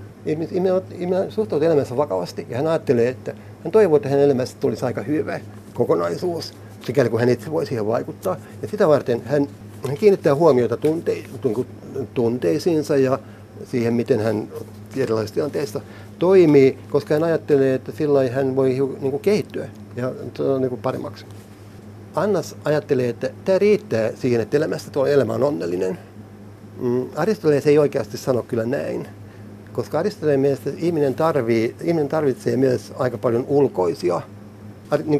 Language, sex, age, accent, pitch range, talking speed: Finnish, male, 60-79, native, 105-150 Hz, 140 wpm